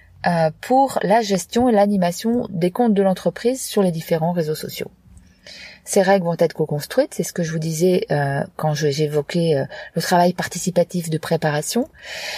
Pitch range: 170-215 Hz